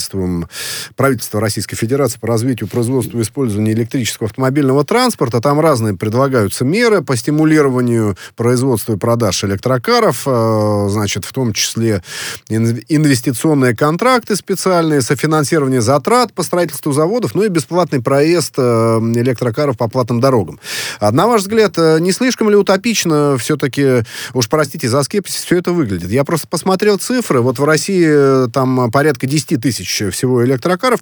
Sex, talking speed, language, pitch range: male, 135 wpm, Russian, 115-165 Hz